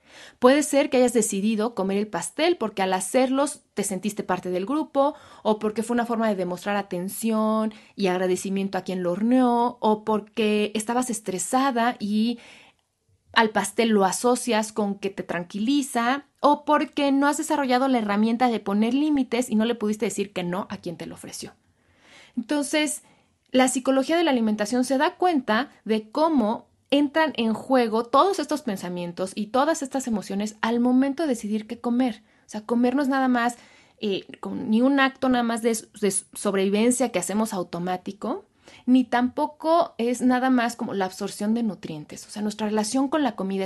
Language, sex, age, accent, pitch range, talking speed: Spanish, female, 30-49, Mexican, 200-265 Hz, 175 wpm